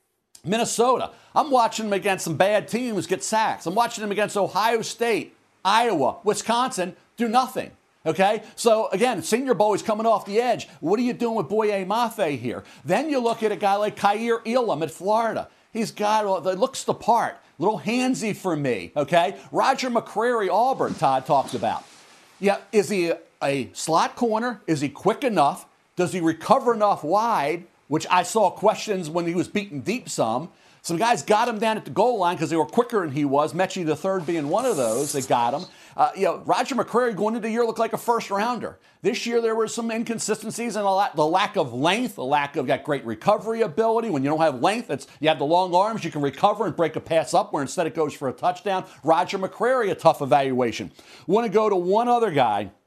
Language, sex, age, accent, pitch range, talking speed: English, male, 60-79, American, 170-225 Hz, 210 wpm